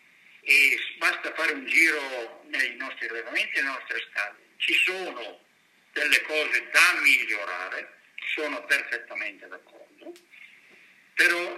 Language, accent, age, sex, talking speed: Italian, native, 50-69, male, 115 wpm